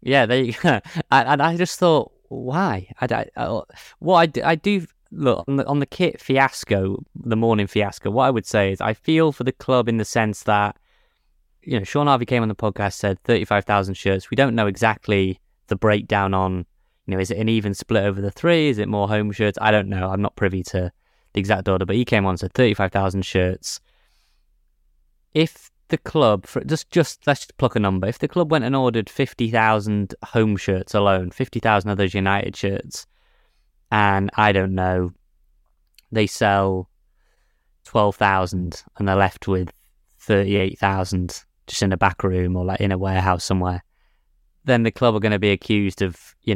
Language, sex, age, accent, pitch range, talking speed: English, male, 20-39, British, 95-120 Hz, 185 wpm